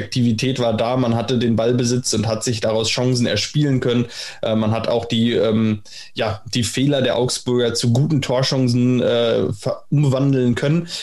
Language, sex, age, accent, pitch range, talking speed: German, male, 20-39, German, 115-130 Hz, 170 wpm